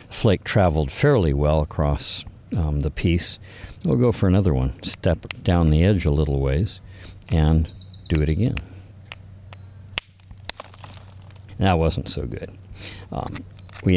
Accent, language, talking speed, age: American, English, 135 wpm, 50-69